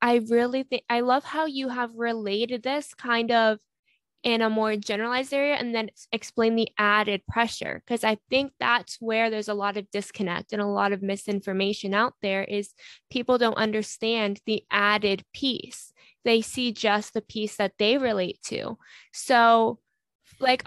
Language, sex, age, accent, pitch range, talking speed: English, female, 20-39, American, 205-240 Hz, 170 wpm